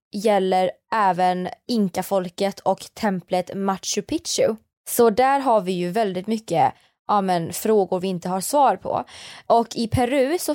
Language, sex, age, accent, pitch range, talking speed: Swedish, female, 20-39, native, 185-235 Hz, 140 wpm